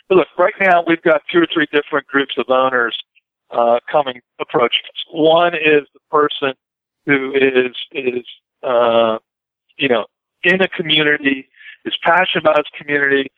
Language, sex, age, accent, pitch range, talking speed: English, male, 50-69, American, 135-155 Hz, 155 wpm